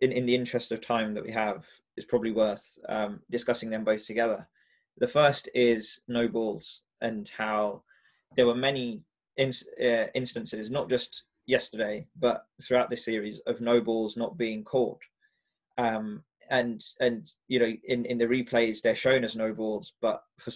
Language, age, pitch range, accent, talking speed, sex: English, 20-39, 110-125 Hz, British, 170 wpm, male